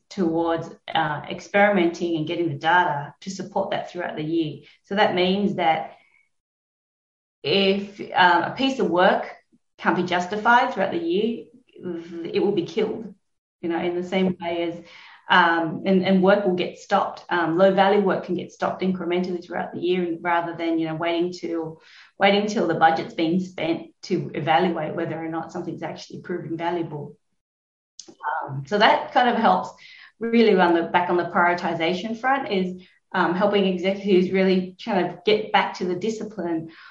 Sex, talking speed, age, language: female, 170 wpm, 30-49, English